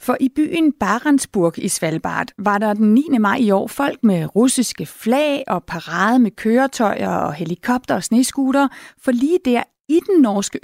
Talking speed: 175 wpm